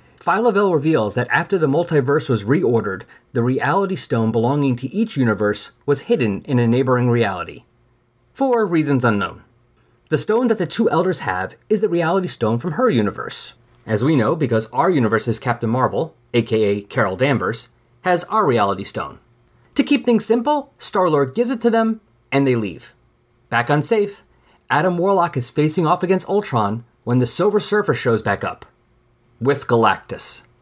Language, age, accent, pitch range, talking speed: English, 30-49, American, 120-180 Hz, 165 wpm